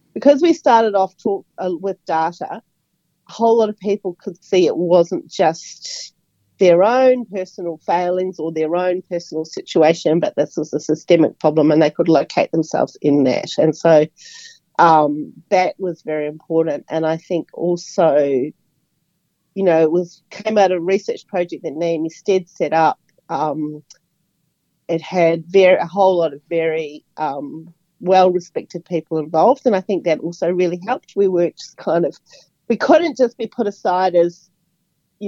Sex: female